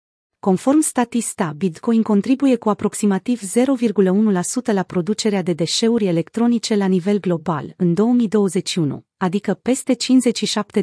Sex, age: female, 30-49